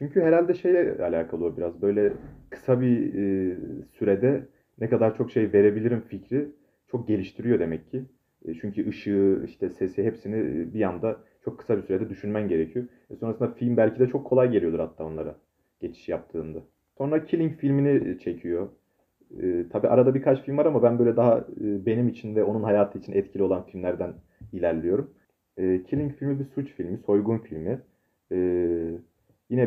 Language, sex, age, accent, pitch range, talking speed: Turkish, male, 30-49, native, 90-125 Hz, 170 wpm